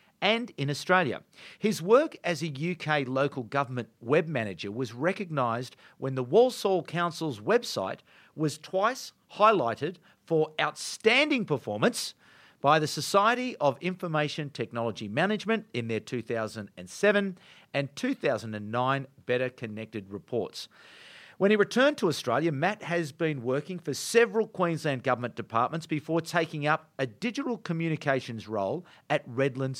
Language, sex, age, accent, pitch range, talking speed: English, male, 50-69, Australian, 120-180 Hz, 125 wpm